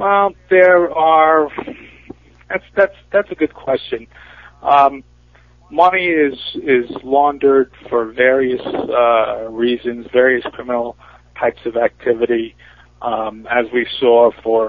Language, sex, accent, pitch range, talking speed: English, male, American, 110-135 Hz, 115 wpm